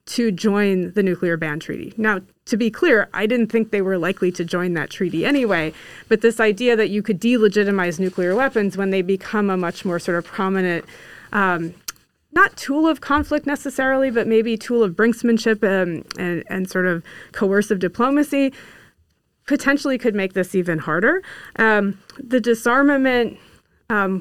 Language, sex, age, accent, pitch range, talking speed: English, female, 30-49, American, 185-235 Hz, 165 wpm